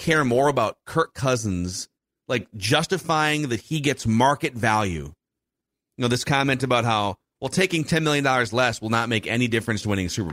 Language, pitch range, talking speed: English, 110-155 Hz, 190 wpm